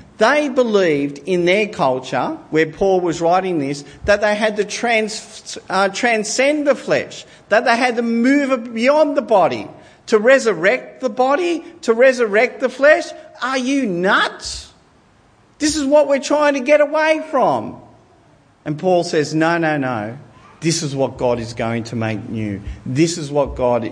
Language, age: English, 50-69